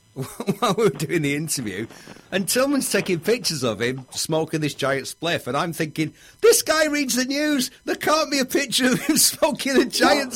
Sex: male